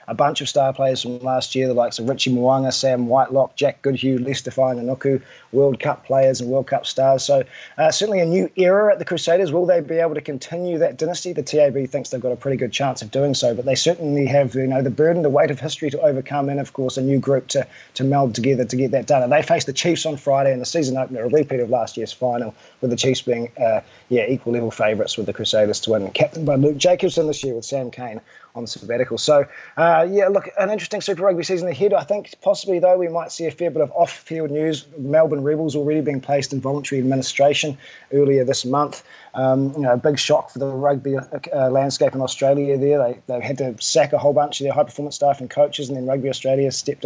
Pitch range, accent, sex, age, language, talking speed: 130-150 Hz, Australian, male, 20-39, English, 245 wpm